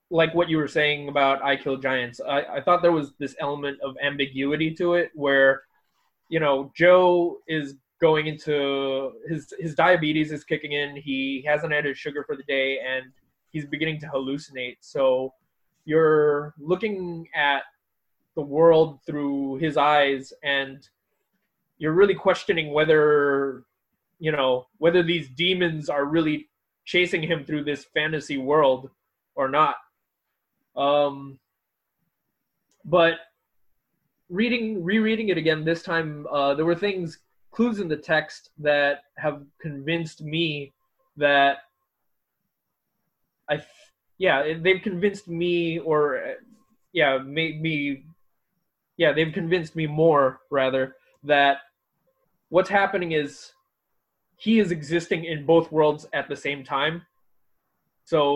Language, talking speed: English, 130 wpm